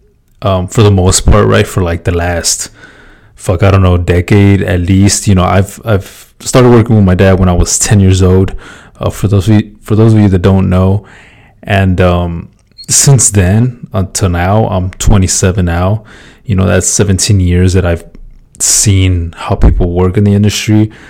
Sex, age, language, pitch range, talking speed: male, 20-39, English, 95-105 Hz, 190 wpm